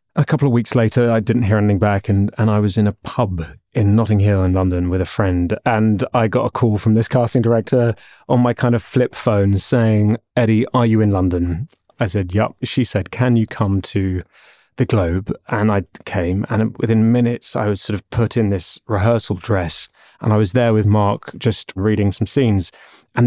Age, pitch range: 30-49, 100-120 Hz